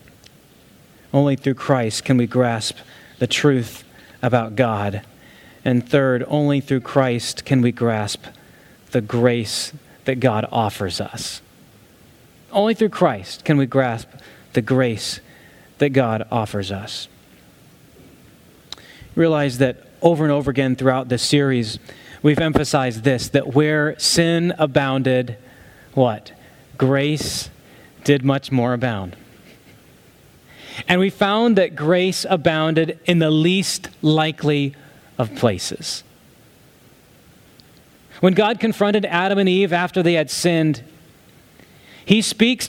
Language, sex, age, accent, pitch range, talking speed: English, male, 30-49, American, 125-190 Hz, 115 wpm